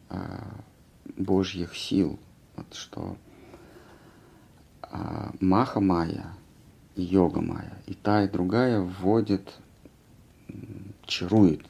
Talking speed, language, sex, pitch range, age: 60 wpm, Russian, male, 90-100 Hz, 50-69